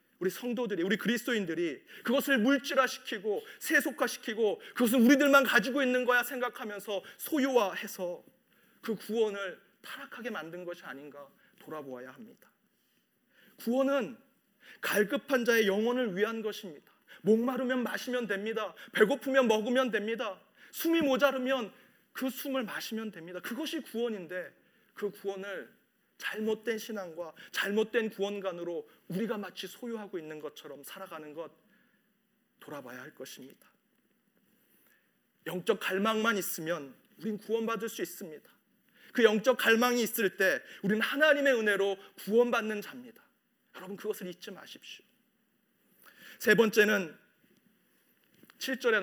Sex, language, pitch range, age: male, Korean, 190-245 Hz, 40-59